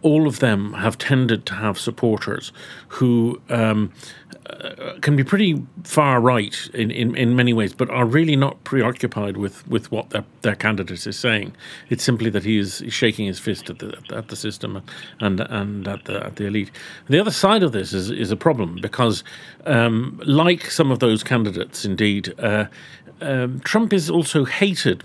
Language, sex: English, male